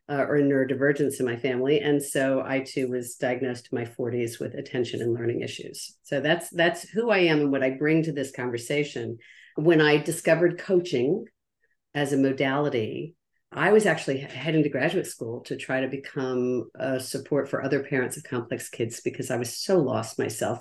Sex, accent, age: female, American, 50-69